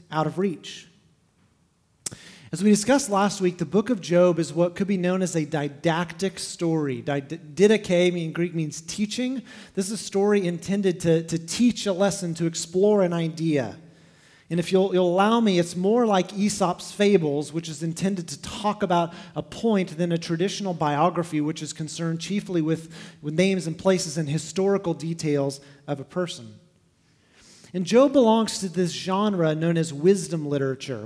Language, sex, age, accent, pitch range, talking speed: English, male, 30-49, American, 160-195 Hz, 170 wpm